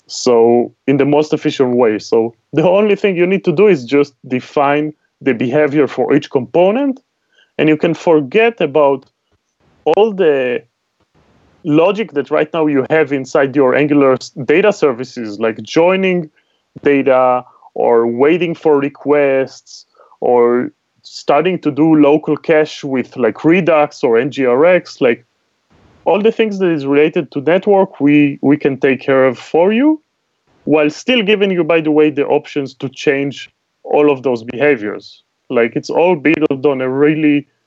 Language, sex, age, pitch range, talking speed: English, male, 30-49, 130-160 Hz, 155 wpm